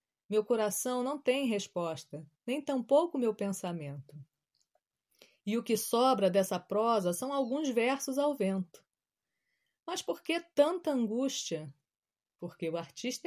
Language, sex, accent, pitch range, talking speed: Portuguese, female, Brazilian, 180-260 Hz, 125 wpm